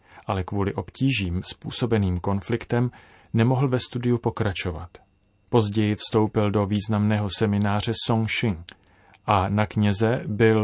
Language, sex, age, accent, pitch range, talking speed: Czech, male, 30-49, native, 100-120 Hz, 115 wpm